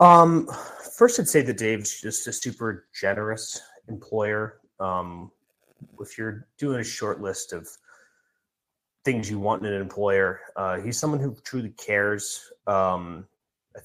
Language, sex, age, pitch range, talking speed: English, male, 30-49, 95-115 Hz, 145 wpm